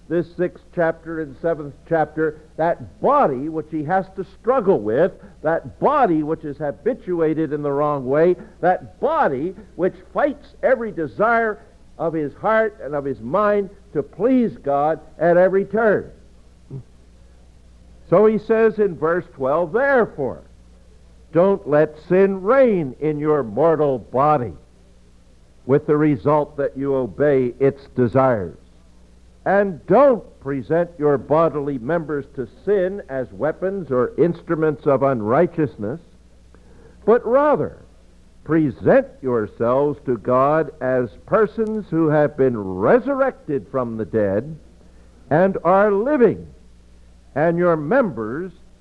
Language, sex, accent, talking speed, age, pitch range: English, male, American, 125 wpm, 60-79, 110-180 Hz